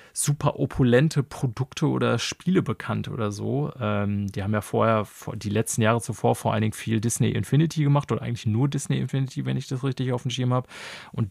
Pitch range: 115-150 Hz